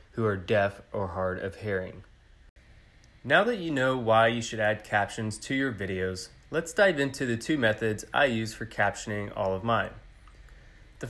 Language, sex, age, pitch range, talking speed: English, male, 20-39, 100-125 Hz, 180 wpm